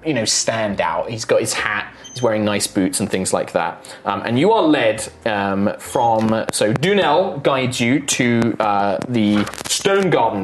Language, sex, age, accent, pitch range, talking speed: English, male, 20-39, British, 120-165 Hz, 185 wpm